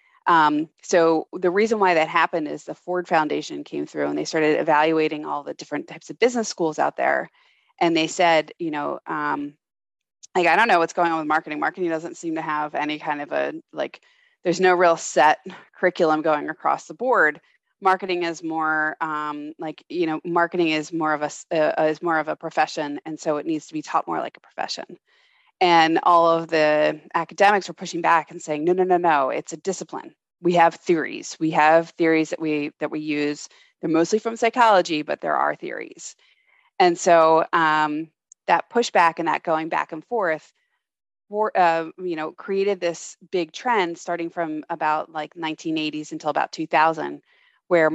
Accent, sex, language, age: American, female, English, 20-39